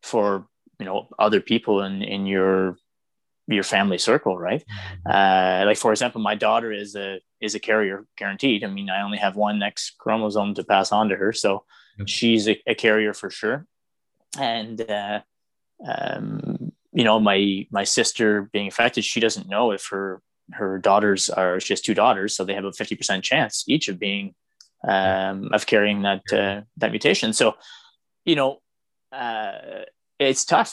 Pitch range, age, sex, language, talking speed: 100-115 Hz, 20-39, male, English, 175 wpm